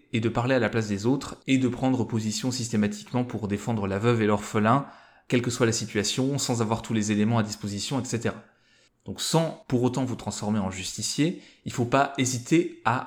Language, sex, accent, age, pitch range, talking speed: French, male, French, 20-39, 105-130 Hz, 210 wpm